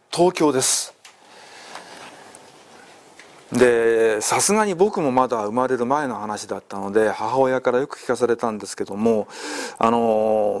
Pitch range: 125-210 Hz